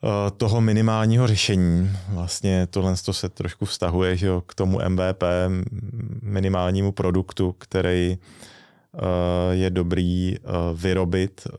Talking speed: 105 wpm